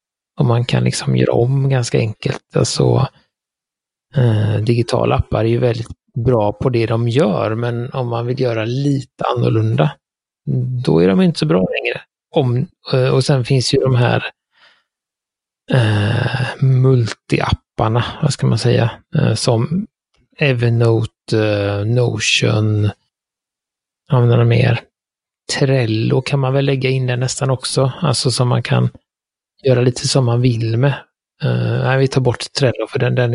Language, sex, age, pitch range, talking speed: Swedish, male, 30-49, 115-135 Hz, 150 wpm